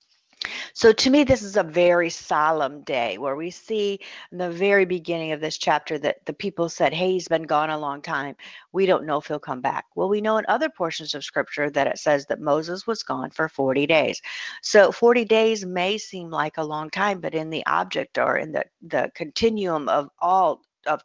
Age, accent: 50-69, American